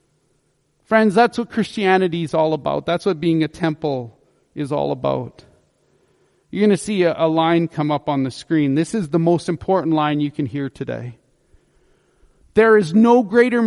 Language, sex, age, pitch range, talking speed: English, male, 40-59, 160-215 Hz, 175 wpm